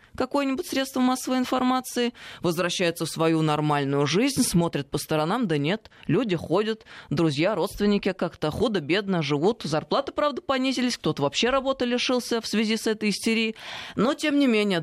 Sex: female